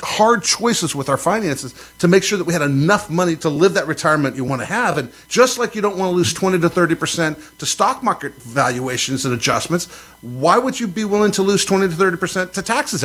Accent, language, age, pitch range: American, English, 50-69, 155-195 Hz